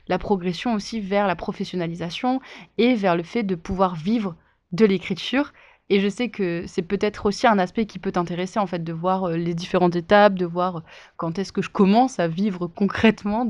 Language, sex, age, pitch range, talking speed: French, female, 20-39, 185-220 Hz, 195 wpm